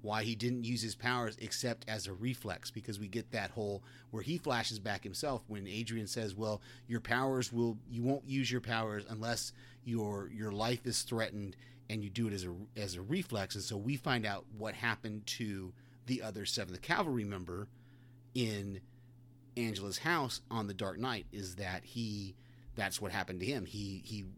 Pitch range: 100-125 Hz